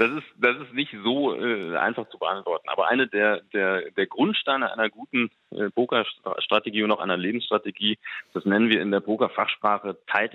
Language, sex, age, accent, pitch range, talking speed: German, male, 30-49, German, 100-120 Hz, 180 wpm